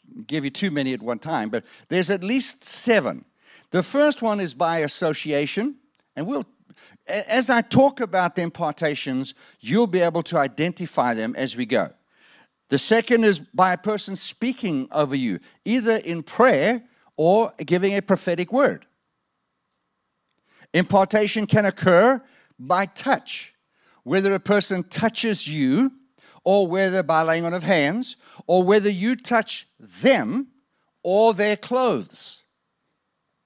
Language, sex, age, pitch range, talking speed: English, male, 50-69, 165-225 Hz, 140 wpm